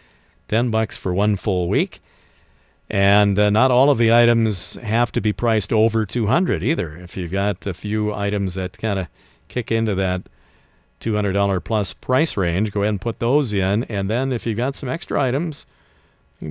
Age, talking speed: 50-69, 180 wpm